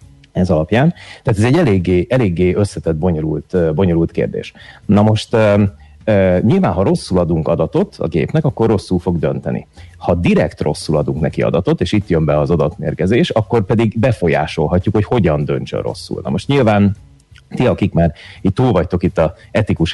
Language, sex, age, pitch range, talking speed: Hungarian, male, 30-49, 80-100 Hz, 165 wpm